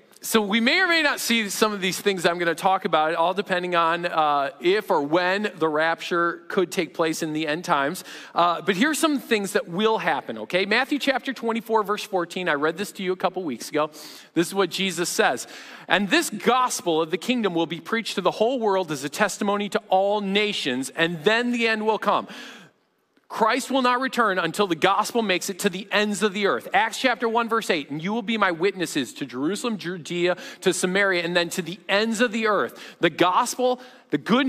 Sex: male